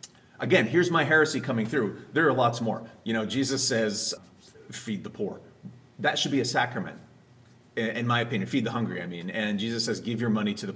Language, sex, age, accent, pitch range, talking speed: English, male, 30-49, American, 105-135 Hz, 210 wpm